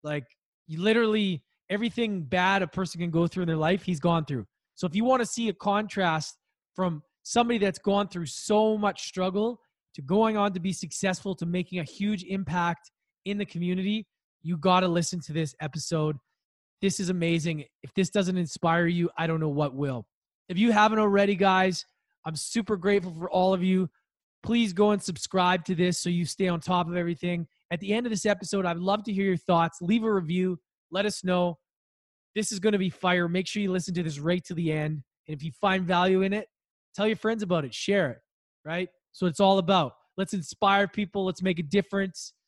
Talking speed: 215 wpm